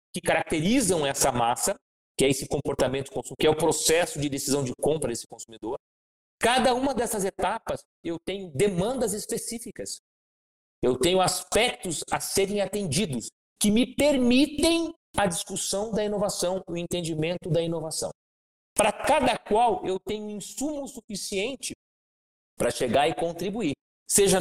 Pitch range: 160-225 Hz